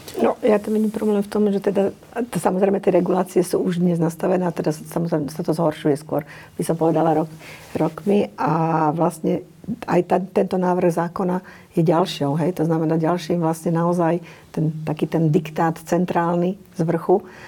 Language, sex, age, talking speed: Slovak, female, 50-69, 165 wpm